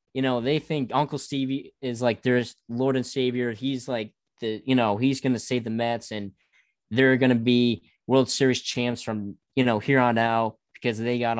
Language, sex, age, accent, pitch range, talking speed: English, male, 20-39, American, 110-135 Hz, 210 wpm